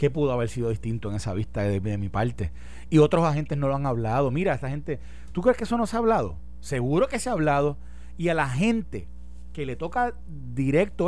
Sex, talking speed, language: male, 240 wpm, Spanish